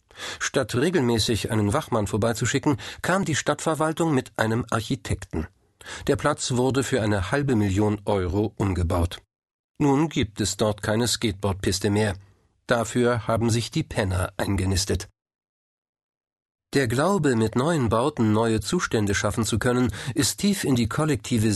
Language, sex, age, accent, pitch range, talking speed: German, male, 50-69, German, 105-135 Hz, 135 wpm